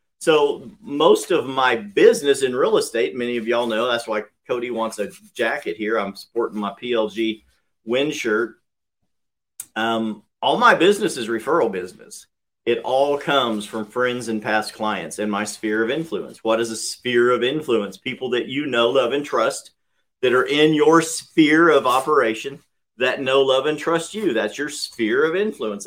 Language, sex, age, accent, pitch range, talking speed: English, male, 50-69, American, 115-150 Hz, 175 wpm